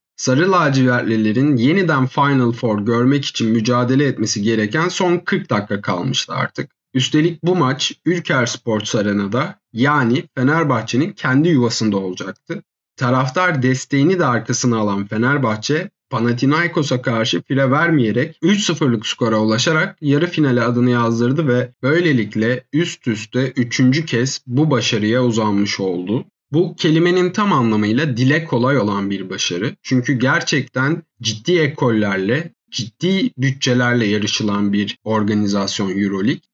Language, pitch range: Turkish, 110-155 Hz